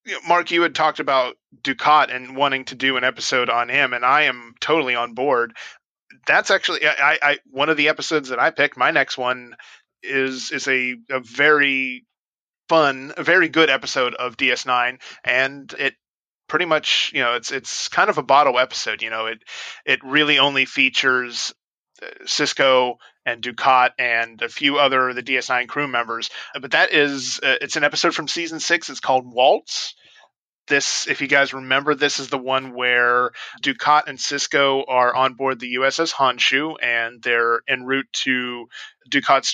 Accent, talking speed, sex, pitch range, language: American, 175 wpm, male, 125-145 Hz, English